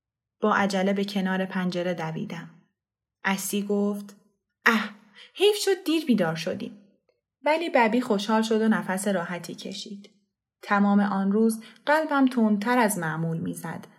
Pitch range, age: 190-240 Hz, 20-39